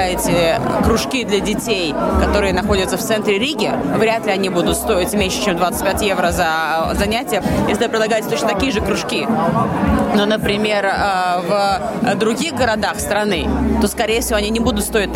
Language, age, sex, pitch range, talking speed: Russian, 20-39, female, 205-240 Hz, 155 wpm